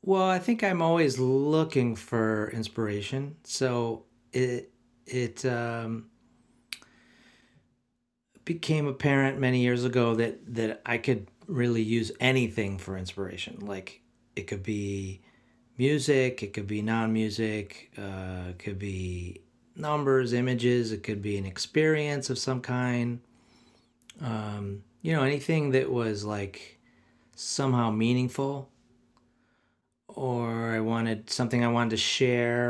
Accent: American